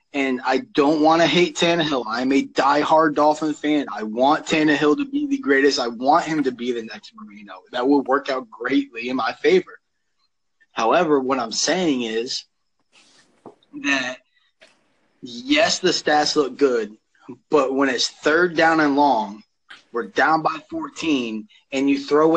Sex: male